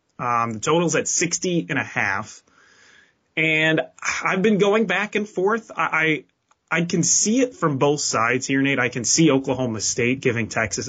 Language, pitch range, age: English, 120-160 Hz, 20-39